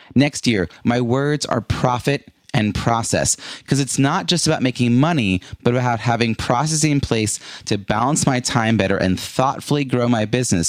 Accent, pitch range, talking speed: American, 100-135 Hz, 175 wpm